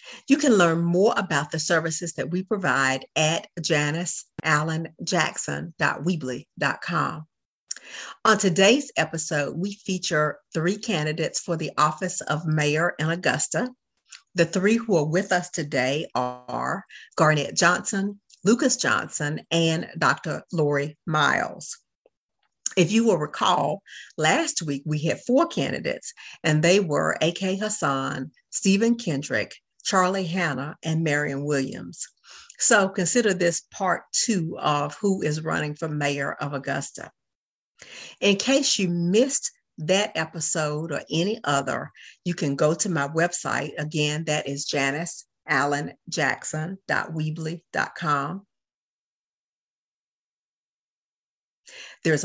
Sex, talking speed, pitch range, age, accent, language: female, 110 wpm, 150-190 Hz, 50-69, American, English